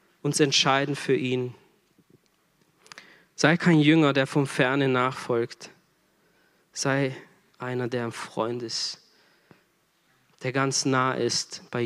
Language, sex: German, male